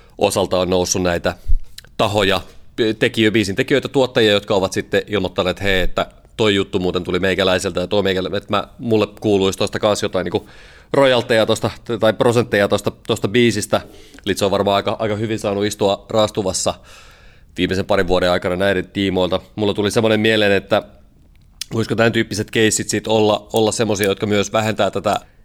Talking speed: 160 wpm